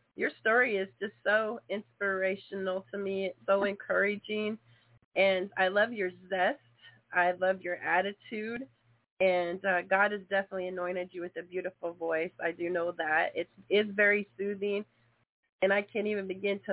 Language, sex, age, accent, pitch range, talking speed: English, female, 30-49, American, 180-210 Hz, 160 wpm